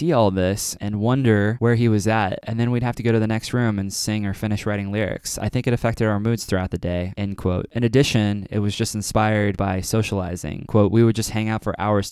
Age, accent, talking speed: 20-39, American, 245 wpm